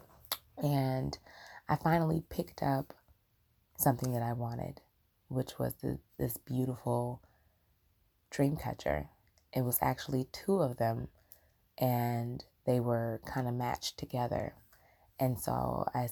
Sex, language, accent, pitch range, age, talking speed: female, English, American, 100-130 Hz, 20-39, 115 wpm